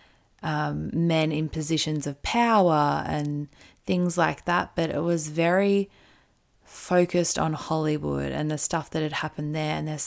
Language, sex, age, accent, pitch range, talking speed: English, female, 20-39, Australian, 150-160 Hz, 155 wpm